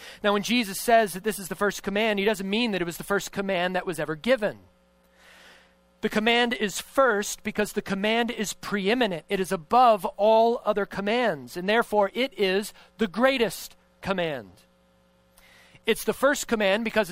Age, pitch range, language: 40-59, 165-230 Hz, English